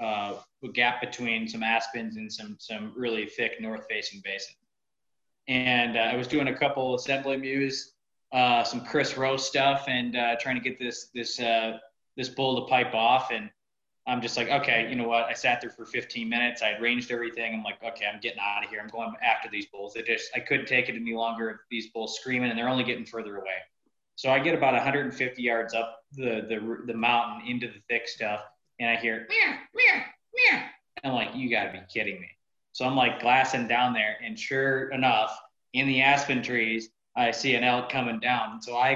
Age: 20-39